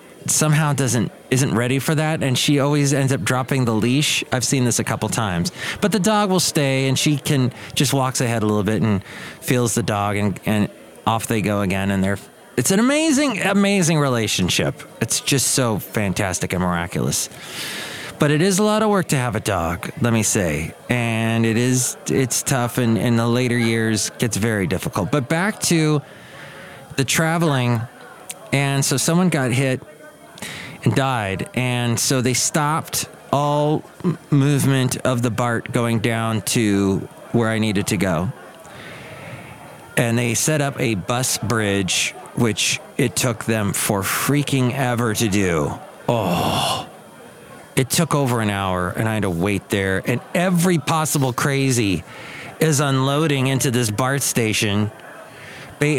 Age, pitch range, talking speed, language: 30-49, 110-145 Hz, 160 wpm, English